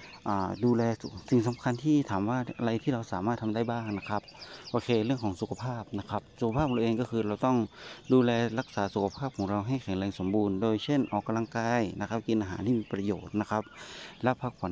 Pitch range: 100-120 Hz